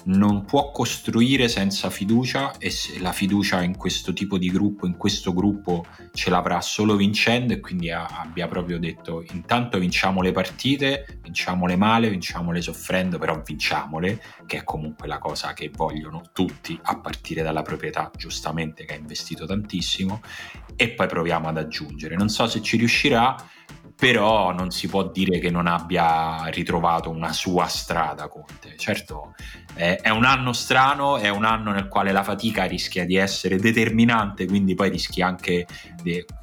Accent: native